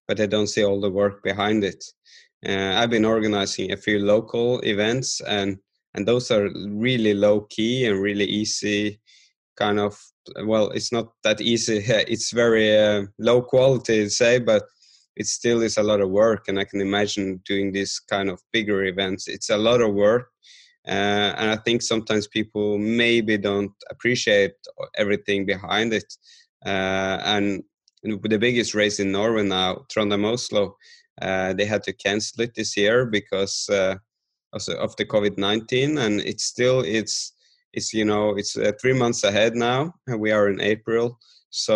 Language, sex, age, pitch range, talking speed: English, male, 20-39, 100-115 Hz, 165 wpm